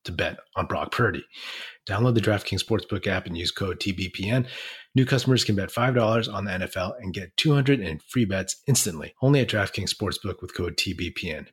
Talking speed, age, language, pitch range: 200 wpm, 30-49, English, 90-110 Hz